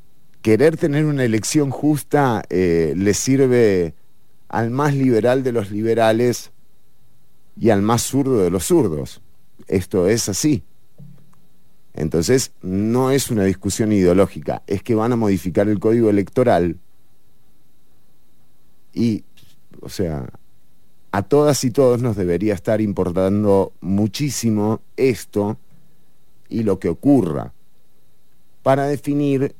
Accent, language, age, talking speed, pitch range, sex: Argentinian, English, 40-59, 115 wpm, 100-145 Hz, male